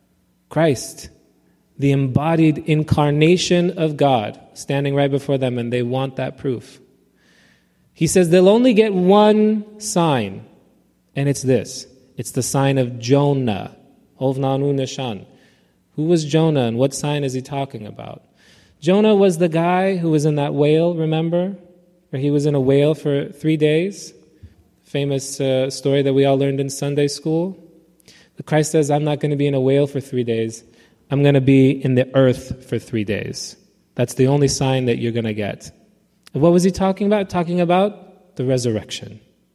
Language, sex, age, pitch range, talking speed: English, male, 20-39, 130-165 Hz, 165 wpm